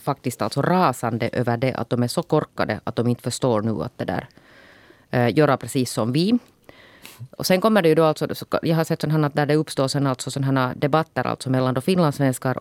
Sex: female